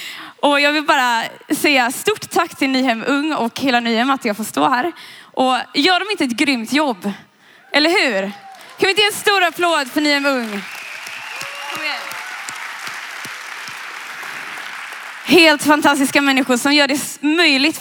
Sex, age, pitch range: female, 20-39, 245-320 Hz